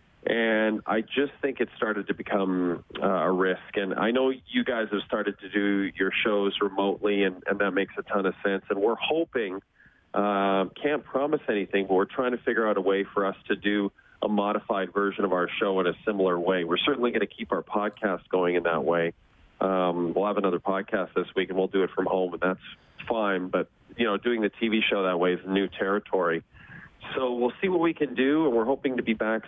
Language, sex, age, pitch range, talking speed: English, male, 40-59, 95-120 Hz, 230 wpm